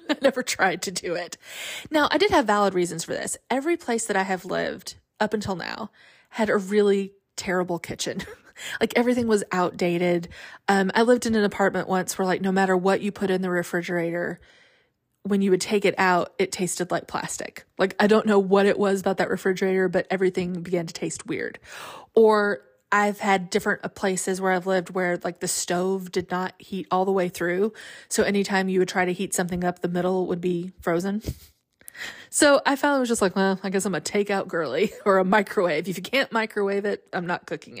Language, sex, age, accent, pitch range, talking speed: English, female, 20-39, American, 180-210 Hz, 210 wpm